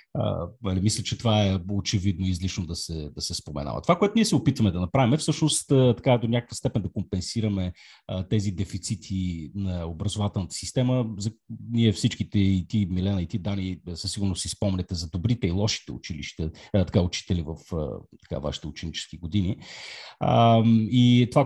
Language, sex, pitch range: Bulgarian, male, 90-115 Hz